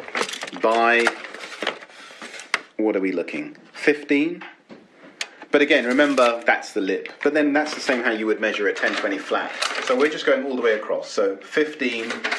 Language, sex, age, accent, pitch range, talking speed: English, male, 30-49, British, 110-150 Hz, 170 wpm